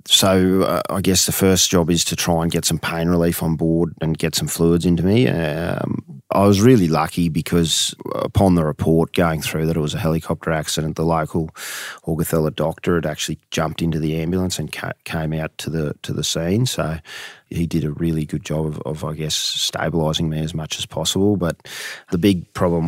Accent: Australian